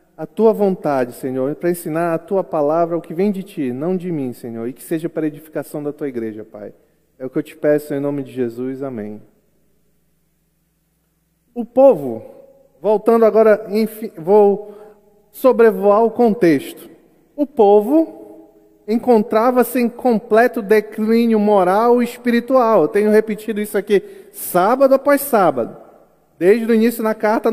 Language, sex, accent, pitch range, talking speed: Portuguese, male, Brazilian, 180-255 Hz, 150 wpm